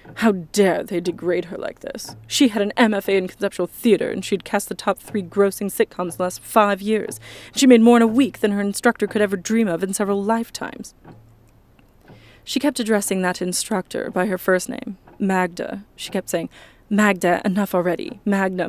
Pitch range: 180-220 Hz